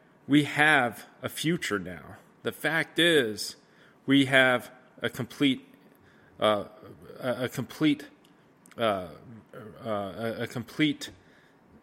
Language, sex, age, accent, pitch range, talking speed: English, male, 30-49, American, 120-145 Hz, 95 wpm